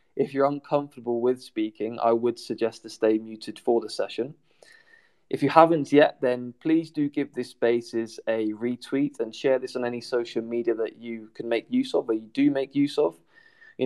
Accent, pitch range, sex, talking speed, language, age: British, 115-145 Hz, male, 200 wpm, English, 20-39